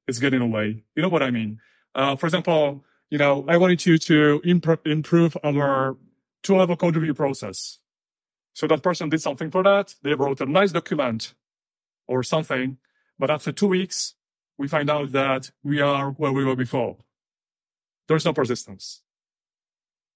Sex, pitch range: male, 130-160 Hz